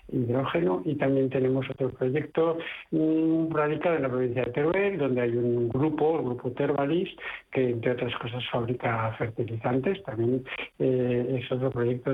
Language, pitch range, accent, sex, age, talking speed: Spanish, 120-140 Hz, Spanish, male, 60-79, 160 wpm